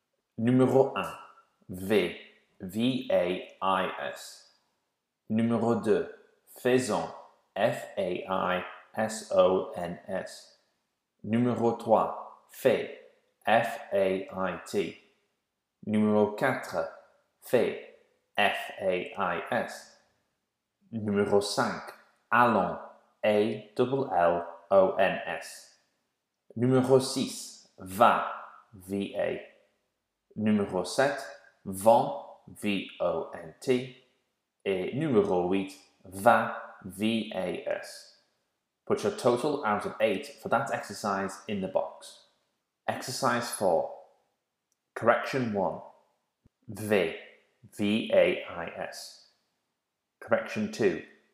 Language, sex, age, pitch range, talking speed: English, male, 30-49, 100-130 Hz, 80 wpm